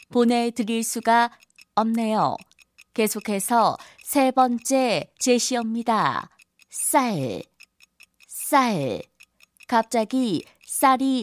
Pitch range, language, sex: 225-250 Hz, Korean, female